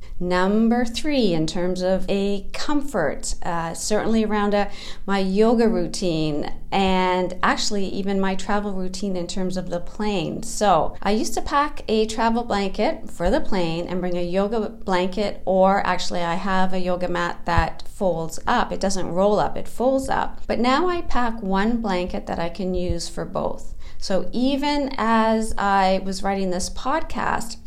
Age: 40-59